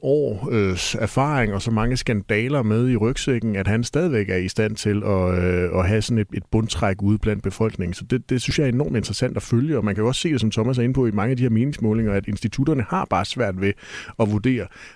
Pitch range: 100-120 Hz